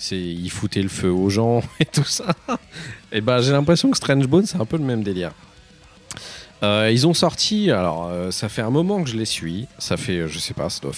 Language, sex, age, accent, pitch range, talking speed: French, male, 40-59, French, 95-135 Hz, 230 wpm